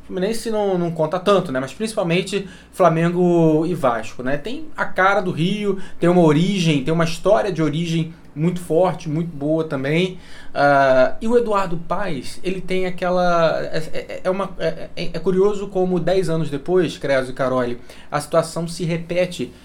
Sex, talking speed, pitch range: male, 170 wpm, 135-180 Hz